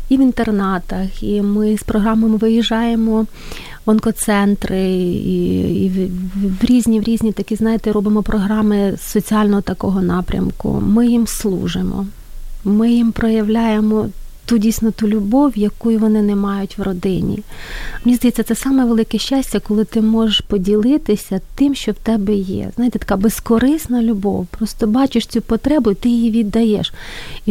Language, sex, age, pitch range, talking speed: Ukrainian, female, 30-49, 205-245 Hz, 150 wpm